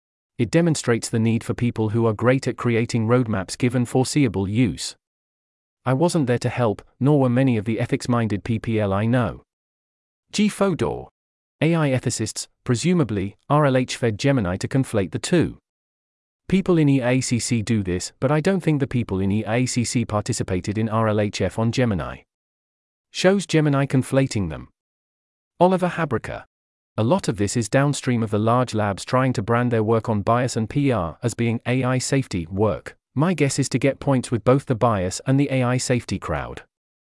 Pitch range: 100-135 Hz